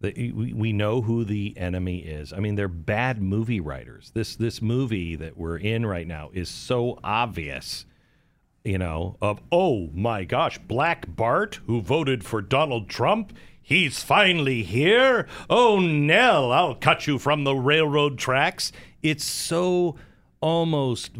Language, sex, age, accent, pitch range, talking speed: English, male, 40-59, American, 95-130 Hz, 145 wpm